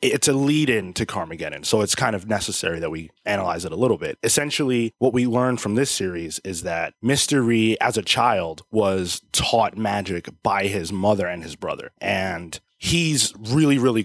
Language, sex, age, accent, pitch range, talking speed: English, male, 20-39, American, 95-120 Hz, 190 wpm